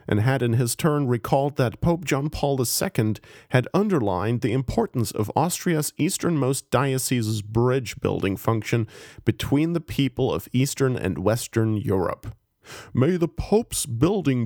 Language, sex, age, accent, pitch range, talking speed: English, male, 40-59, American, 110-140 Hz, 135 wpm